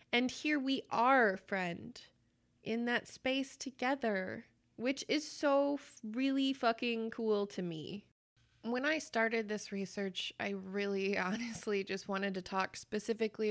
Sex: female